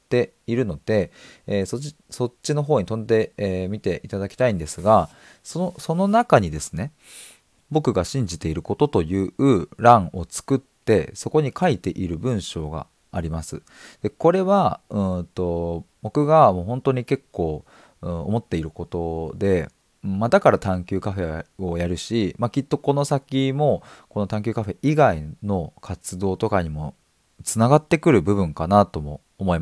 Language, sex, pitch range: Japanese, male, 90-135 Hz